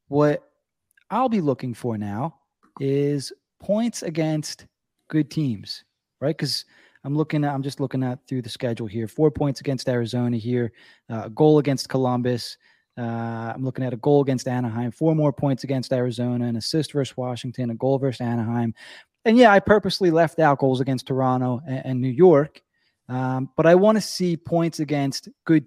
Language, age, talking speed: English, 20-39, 180 wpm